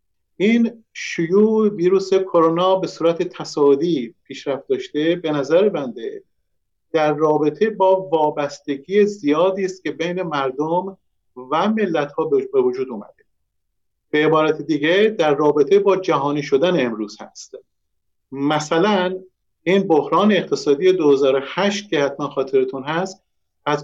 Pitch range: 145-205 Hz